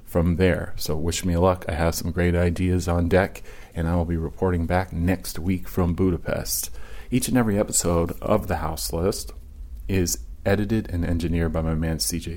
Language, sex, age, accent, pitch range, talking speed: English, male, 30-49, American, 80-95 Hz, 190 wpm